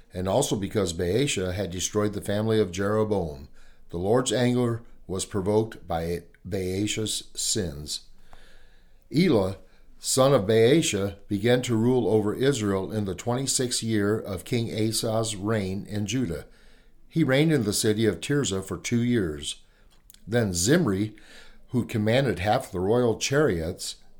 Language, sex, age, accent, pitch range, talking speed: English, male, 50-69, American, 100-125 Hz, 135 wpm